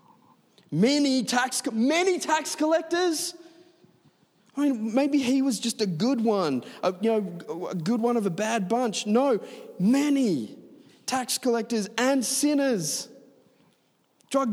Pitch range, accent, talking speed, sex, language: 150-230 Hz, Australian, 125 wpm, male, English